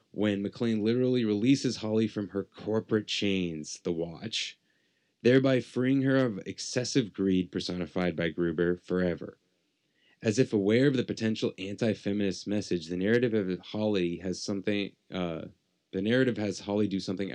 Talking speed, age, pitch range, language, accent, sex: 150 wpm, 20-39, 90-105 Hz, English, American, male